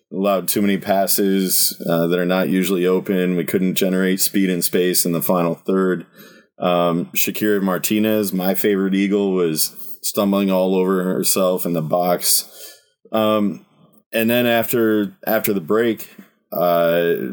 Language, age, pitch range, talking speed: English, 20-39, 90-100 Hz, 145 wpm